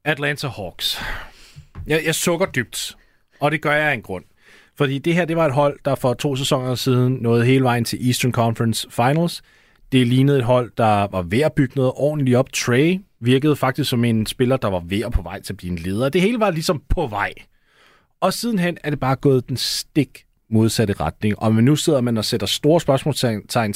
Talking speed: 215 wpm